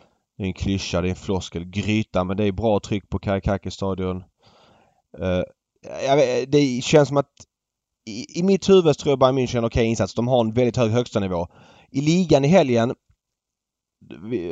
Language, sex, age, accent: Swedish, male, 20-39, native